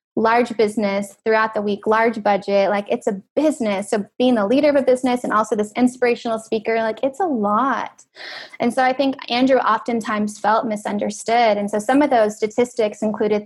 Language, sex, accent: English, female, American